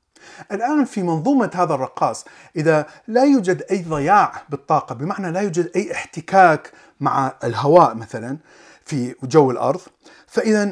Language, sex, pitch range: Arabic, male, 130-180 Hz